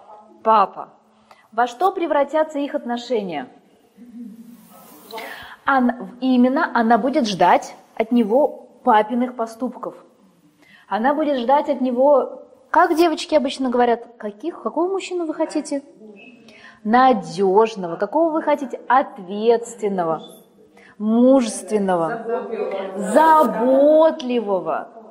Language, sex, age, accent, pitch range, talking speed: Russian, female, 20-39, native, 220-280 Hz, 80 wpm